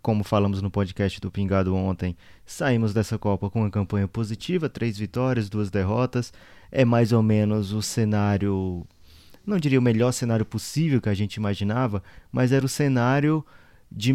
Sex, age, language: male, 20-39, Portuguese